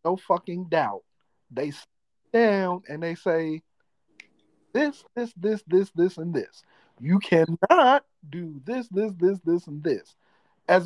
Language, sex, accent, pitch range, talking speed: English, male, American, 160-200 Hz, 145 wpm